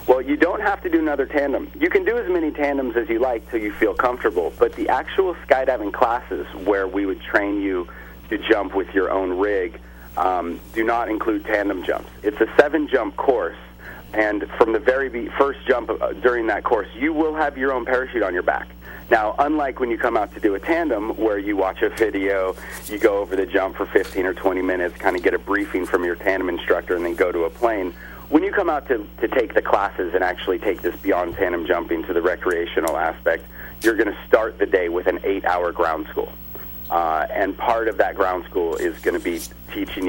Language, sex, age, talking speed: English, male, 40-59, 225 wpm